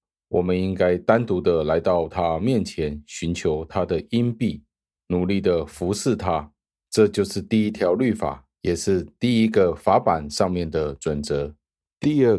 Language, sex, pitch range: Chinese, male, 75-100 Hz